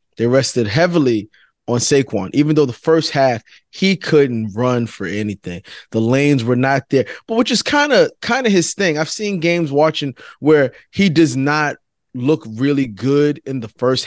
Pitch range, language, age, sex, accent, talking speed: 125-160 Hz, English, 20-39, male, American, 175 wpm